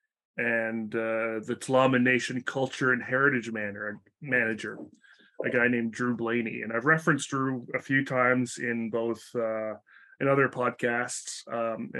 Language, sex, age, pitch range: English, male, 30-49, 110-130 Hz